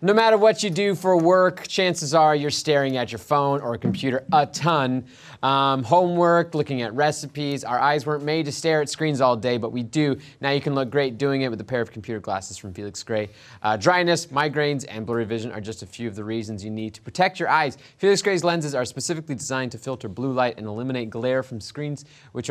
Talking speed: 235 wpm